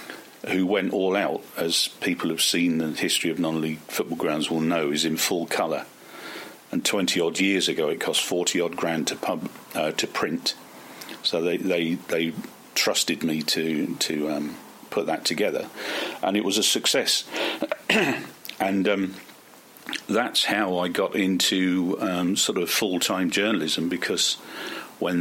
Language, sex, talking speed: English, male, 155 wpm